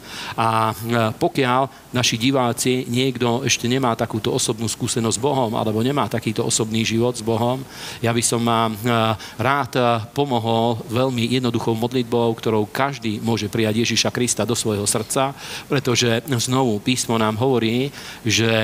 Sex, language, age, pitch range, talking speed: male, Slovak, 40-59, 110-125 Hz, 140 wpm